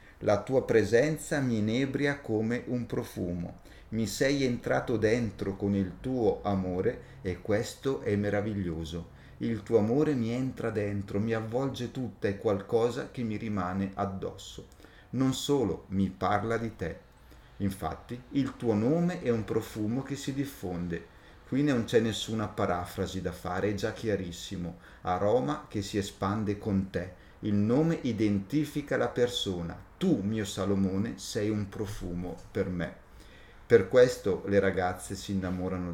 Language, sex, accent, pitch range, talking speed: Italian, male, native, 95-120 Hz, 145 wpm